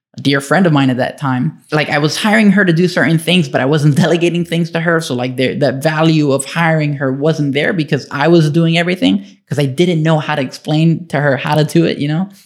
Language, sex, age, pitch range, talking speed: English, male, 10-29, 130-155 Hz, 250 wpm